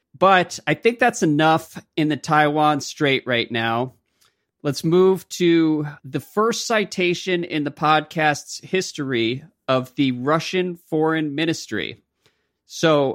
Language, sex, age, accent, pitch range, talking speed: English, male, 40-59, American, 115-150 Hz, 125 wpm